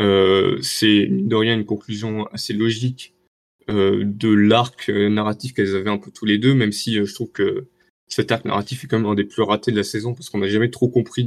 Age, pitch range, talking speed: 20-39, 100-120 Hz, 240 wpm